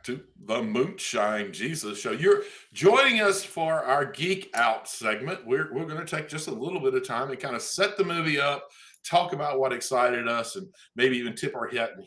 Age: 50-69